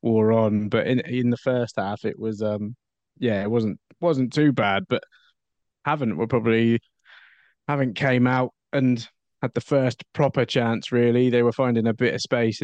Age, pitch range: 20-39, 105-125 Hz